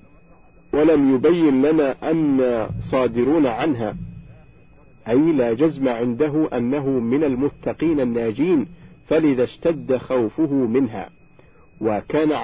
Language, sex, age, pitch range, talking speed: Arabic, male, 50-69, 125-155 Hz, 90 wpm